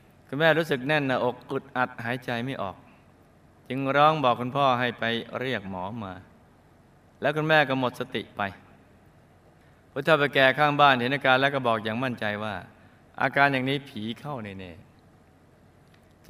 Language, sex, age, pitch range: Thai, male, 20-39, 110-145 Hz